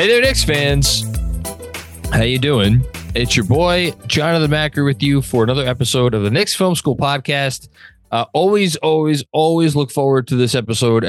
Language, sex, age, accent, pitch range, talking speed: English, male, 20-39, American, 105-140 Hz, 185 wpm